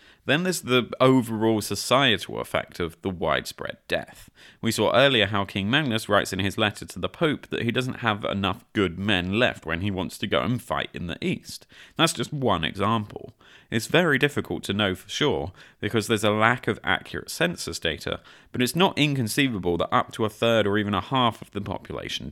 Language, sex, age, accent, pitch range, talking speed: English, male, 30-49, British, 95-120 Hz, 205 wpm